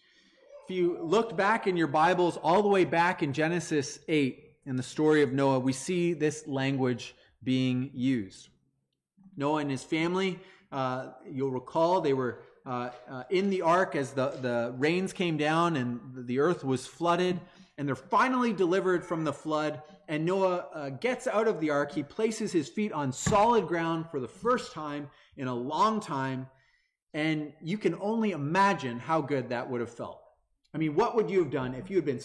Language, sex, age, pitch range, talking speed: English, male, 30-49, 140-195 Hz, 190 wpm